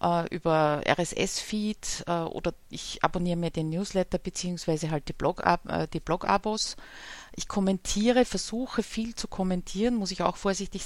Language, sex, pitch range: German, female, 170-205 Hz